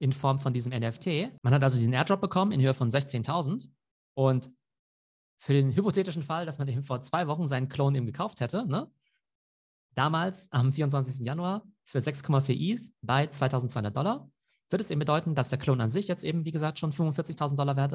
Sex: male